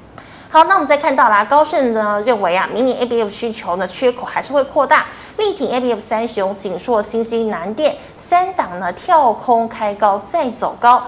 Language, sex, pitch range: Chinese, female, 210-290 Hz